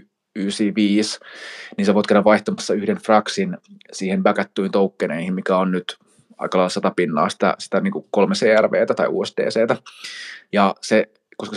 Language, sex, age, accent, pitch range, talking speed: Finnish, male, 20-39, native, 100-155 Hz, 135 wpm